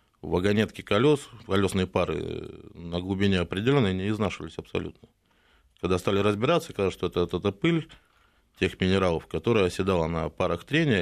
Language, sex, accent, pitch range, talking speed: Russian, male, native, 85-105 Hz, 140 wpm